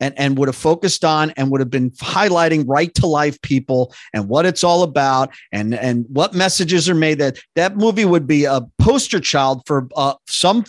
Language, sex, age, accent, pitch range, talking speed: English, male, 40-59, American, 140-185 Hz, 210 wpm